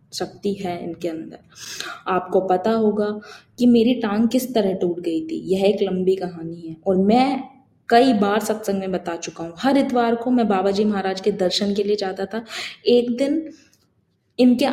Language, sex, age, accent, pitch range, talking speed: Hindi, female, 20-39, native, 190-235 Hz, 180 wpm